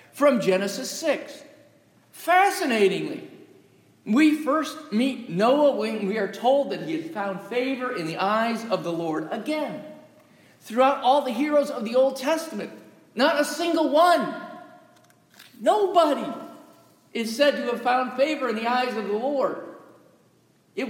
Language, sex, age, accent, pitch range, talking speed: English, male, 50-69, American, 215-300 Hz, 145 wpm